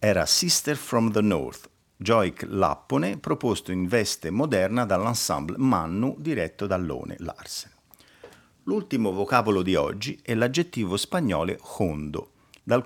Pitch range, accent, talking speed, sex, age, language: 90-120 Hz, native, 120 wpm, male, 50-69, Italian